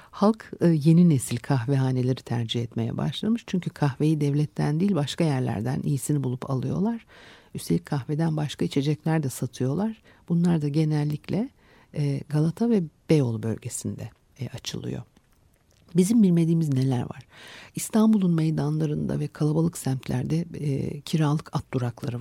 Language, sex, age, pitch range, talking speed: Turkish, female, 60-79, 130-165 Hz, 115 wpm